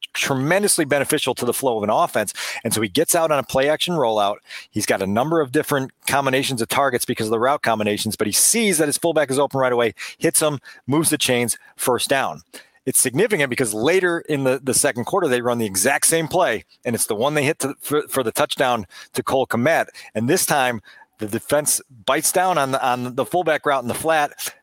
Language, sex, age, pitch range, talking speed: English, male, 40-59, 120-150 Hz, 230 wpm